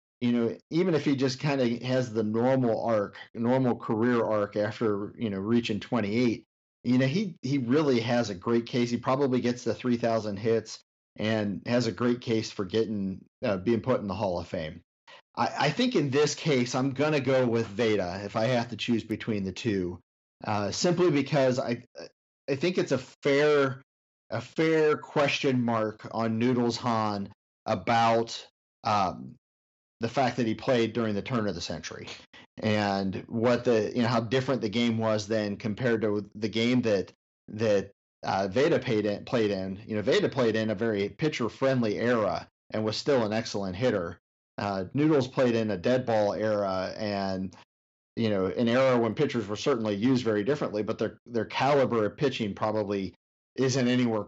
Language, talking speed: English, 180 wpm